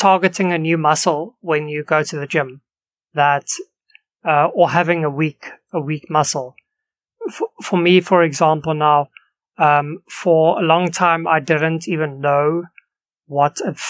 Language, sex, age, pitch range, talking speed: English, male, 30-49, 150-180 Hz, 155 wpm